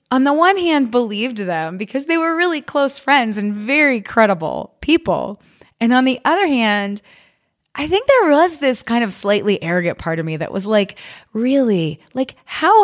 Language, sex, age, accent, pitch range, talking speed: English, female, 20-39, American, 200-295 Hz, 180 wpm